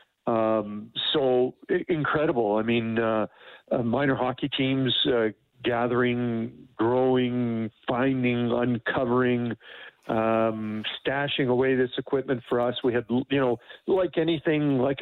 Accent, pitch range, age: American, 115-135 Hz, 50-69